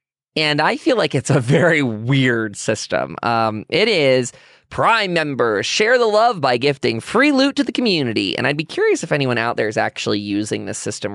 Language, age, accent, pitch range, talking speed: English, 20-39, American, 120-195 Hz, 200 wpm